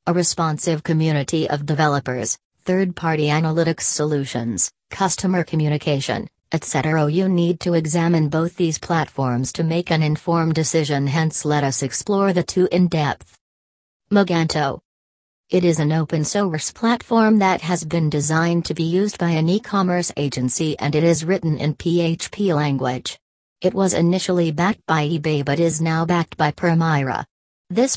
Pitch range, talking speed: 150-175 Hz, 150 wpm